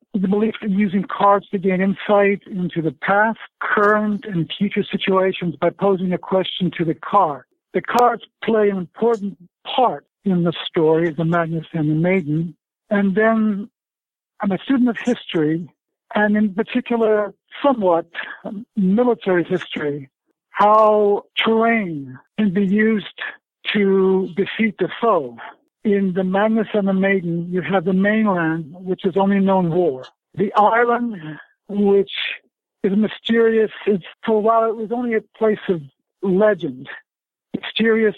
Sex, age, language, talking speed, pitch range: male, 60-79, English, 140 wpm, 185-215 Hz